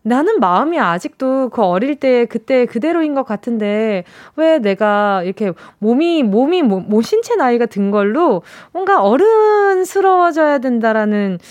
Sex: female